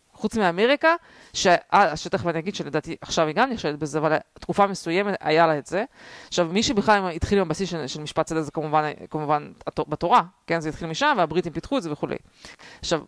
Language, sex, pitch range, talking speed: Hebrew, female, 180-250 Hz, 195 wpm